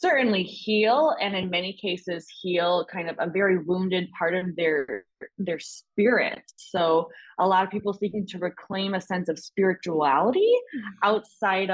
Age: 20-39